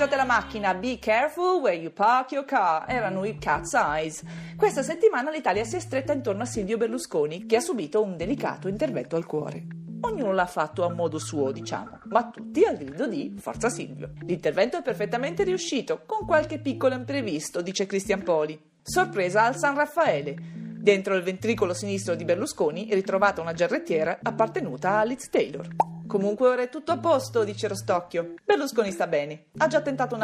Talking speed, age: 175 wpm, 40-59